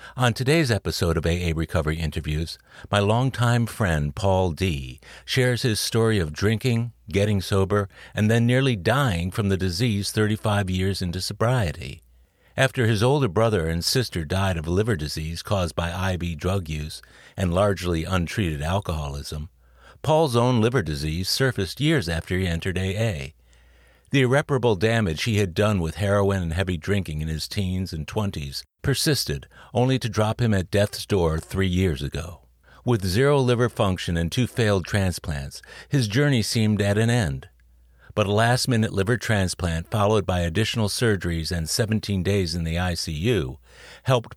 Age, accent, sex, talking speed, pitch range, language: 50-69, American, male, 155 wpm, 80-115 Hz, English